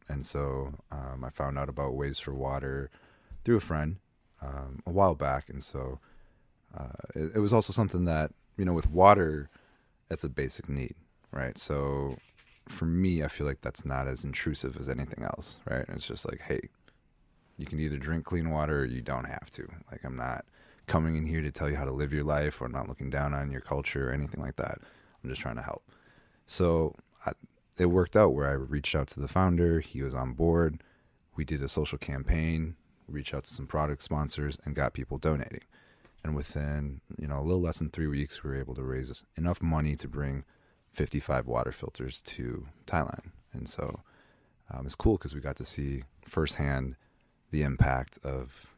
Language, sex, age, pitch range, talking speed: English, male, 30-49, 70-80 Hz, 205 wpm